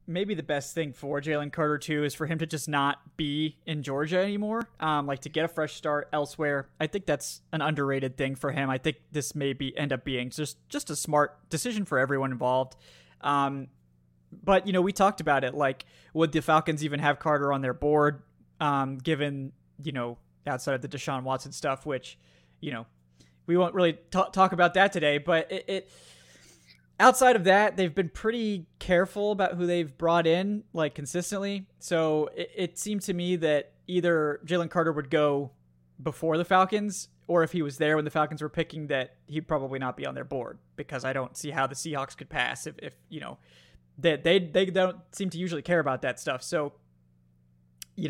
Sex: male